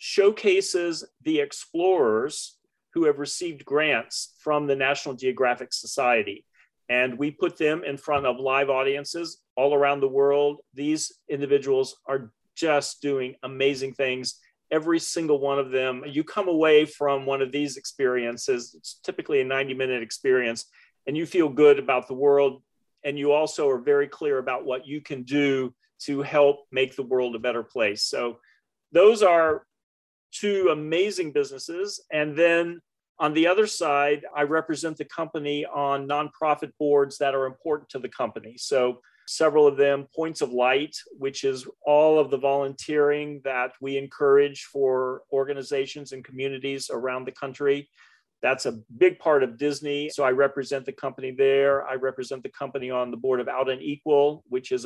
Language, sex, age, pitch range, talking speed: English, male, 40-59, 130-155 Hz, 165 wpm